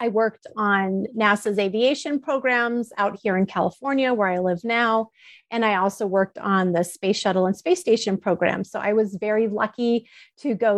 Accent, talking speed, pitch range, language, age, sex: American, 185 wpm, 190-240 Hz, English, 30-49, female